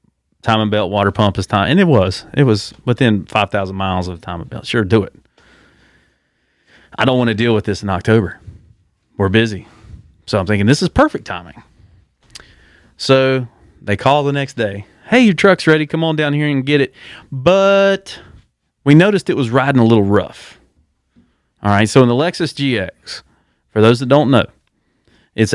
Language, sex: English, male